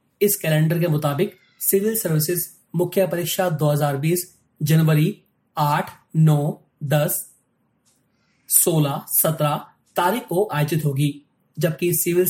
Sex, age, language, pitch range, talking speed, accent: male, 30-49, Hindi, 150-185 Hz, 100 wpm, native